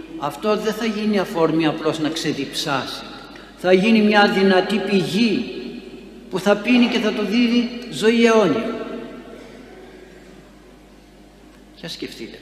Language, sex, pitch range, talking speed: Greek, male, 150-210 Hz, 115 wpm